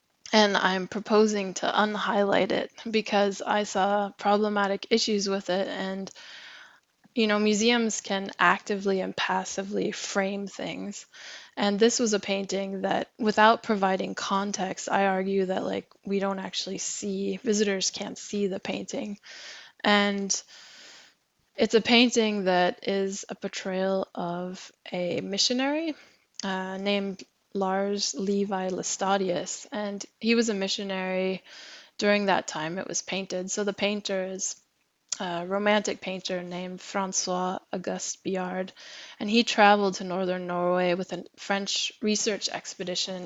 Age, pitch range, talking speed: 10-29, 190-215 Hz, 130 wpm